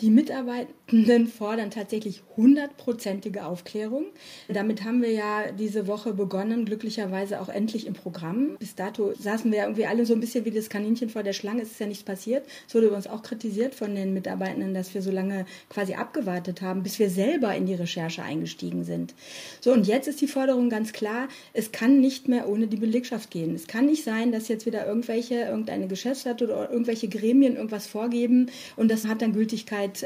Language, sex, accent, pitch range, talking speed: German, female, German, 210-240 Hz, 195 wpm